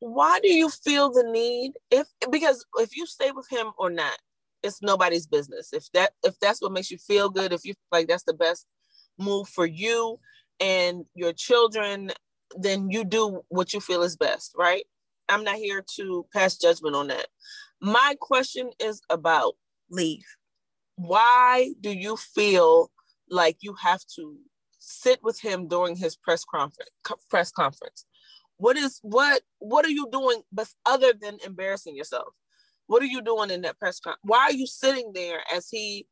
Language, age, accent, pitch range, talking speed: English, 20-39, American, 180-270 Hz, 175 wpm